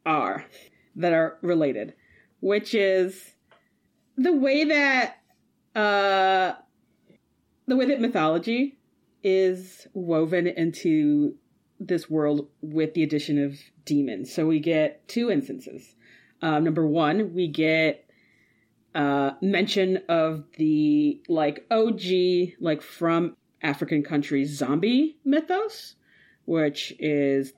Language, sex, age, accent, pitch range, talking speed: English, female, 30-49, American, 140-195 Hz, 105 wpm